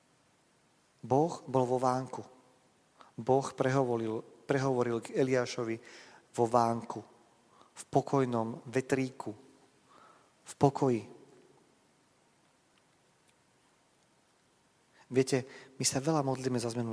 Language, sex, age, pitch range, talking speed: Slovak, male, 40-59, 110-135 Hz, 80 wpm